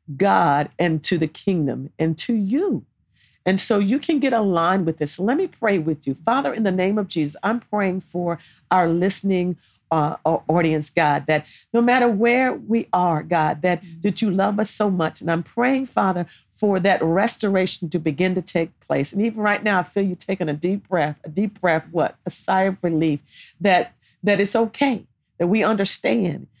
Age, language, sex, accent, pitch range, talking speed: 50-69, English, female, American, 160-205 Hz, 195 wpm